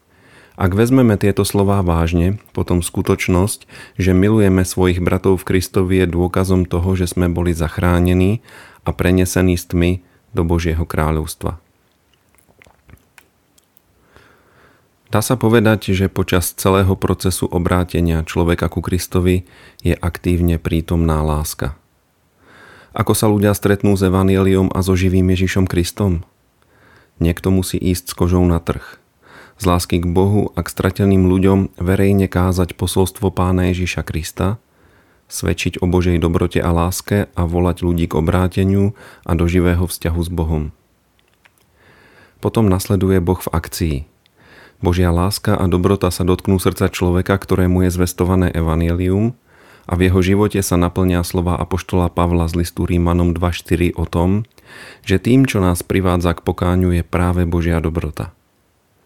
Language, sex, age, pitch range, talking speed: Slovak, male, 40-59, 85-95 Hz, 135 wpm